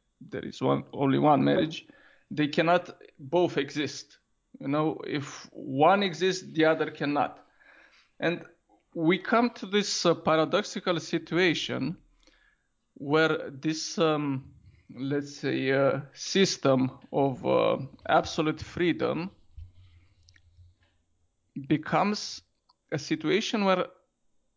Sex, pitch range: male, 140-170 Hz